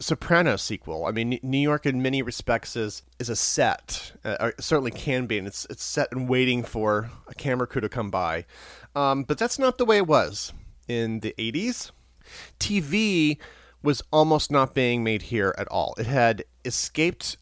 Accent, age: American, 30-49